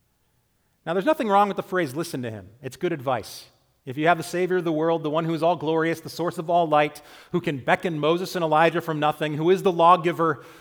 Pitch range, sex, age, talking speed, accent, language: 135-185 Hz, male, 40-59, 250 wpm, American, English